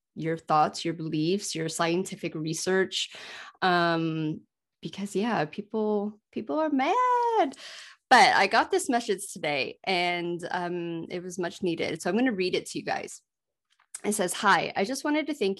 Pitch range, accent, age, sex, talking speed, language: 170-205 Hz, American, 20-39, female, 165 wpm, English